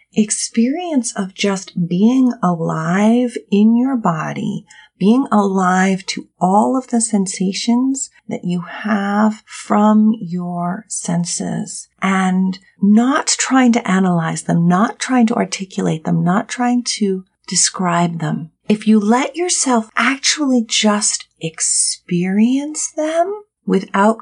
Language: English